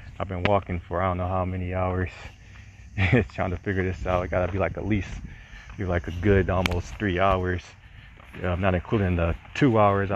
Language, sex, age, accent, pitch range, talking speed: English, male, 30-49, American, 90-110 Hz, 215 wpm